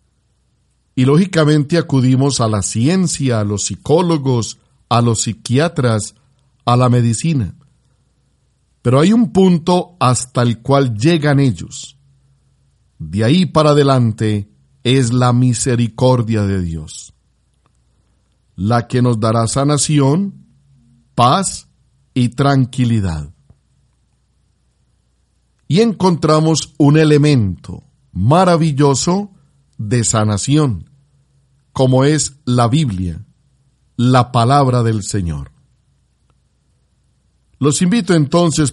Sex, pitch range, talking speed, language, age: male, 115-150 Hz, 90 wpm, Spanish, 50-69